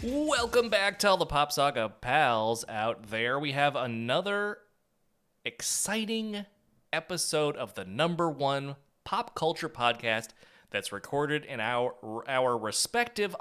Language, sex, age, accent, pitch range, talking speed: English, male, 30-49, American, 120-185 Hz, 120 wpm